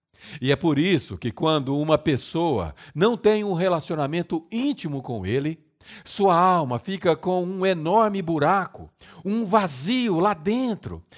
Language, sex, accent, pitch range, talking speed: Portuguese, male, Brazilian, 135-195 Hz, 140 wpm